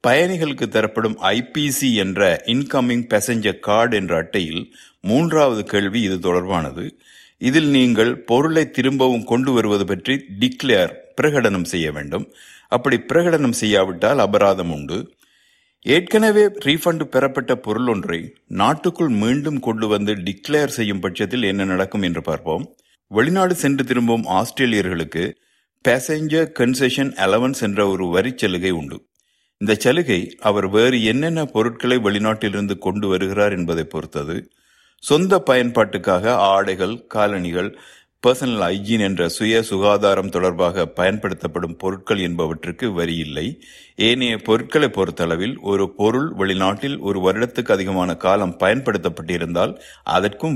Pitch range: 95-130 Hz